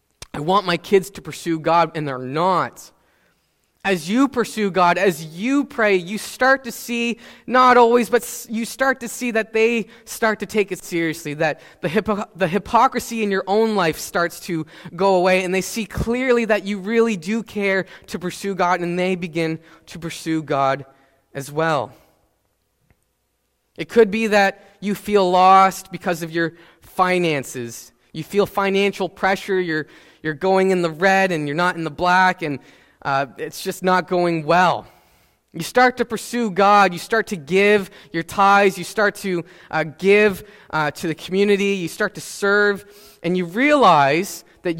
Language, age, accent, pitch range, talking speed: English, 20-39, American, 160-205 Hz, 175 wpm